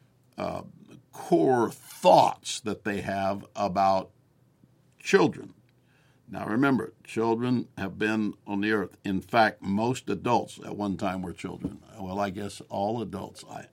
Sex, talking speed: male, 130 wpm